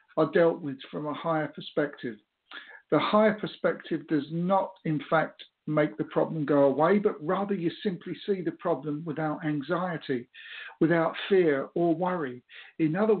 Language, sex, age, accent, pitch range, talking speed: English, male, 50-69, British, 150-190 Hz, 155 wpm